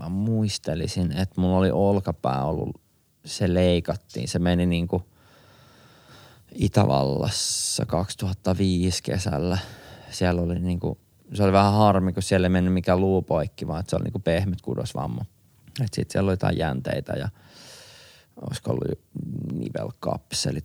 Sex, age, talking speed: male, 20-39, 130 wpm